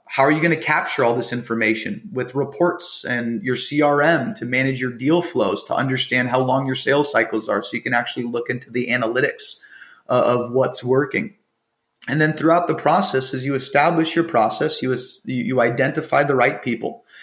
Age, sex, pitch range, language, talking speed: 30-49, male, 120-160 Hz, English, 190 wpm